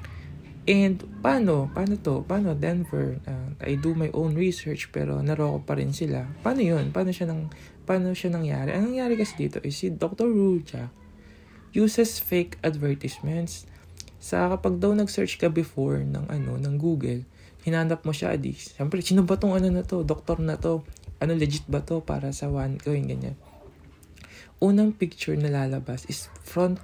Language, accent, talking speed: Filipino, native, 170 wpm